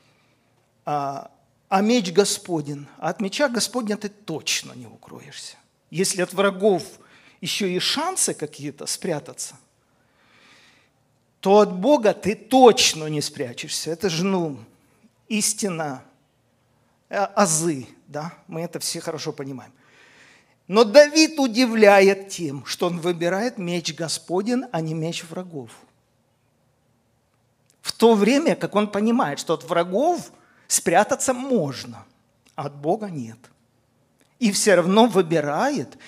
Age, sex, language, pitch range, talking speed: 50-69, male, Russian, 140-200 Hz, 115 wpm